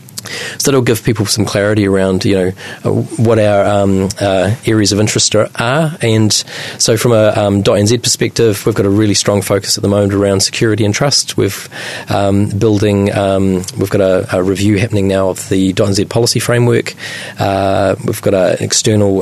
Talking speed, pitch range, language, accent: 190 wpm, 95-115 Hz, English, Australian